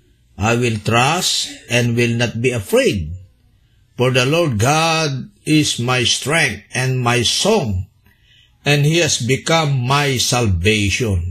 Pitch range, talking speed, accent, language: 105-160 Hz, 125 wpm, native, Filipino